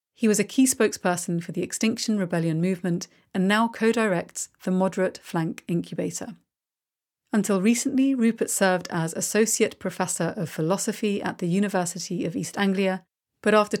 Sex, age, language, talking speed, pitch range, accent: female, 40-59, English, 150 wpm, 175-215 Hz, British